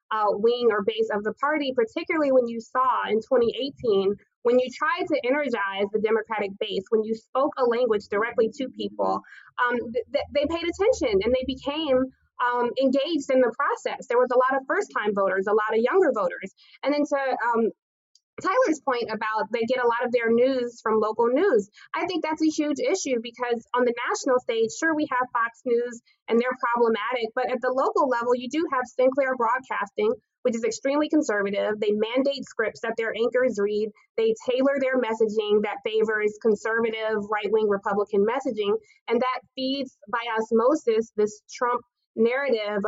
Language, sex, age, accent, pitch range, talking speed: English, female, 20-39, American, 225-275 Hz, 180 wpm